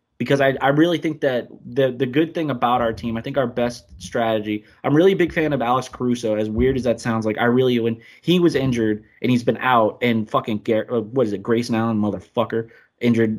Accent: American